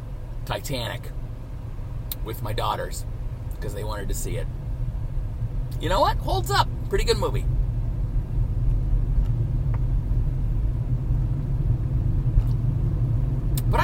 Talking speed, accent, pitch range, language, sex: 80 wpm, American, 120-130 Hz, English, male